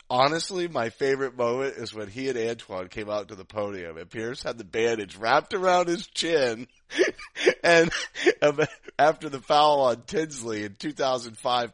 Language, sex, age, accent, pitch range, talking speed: English, male, 30-49, American, 95-135 Hz, 160 wpm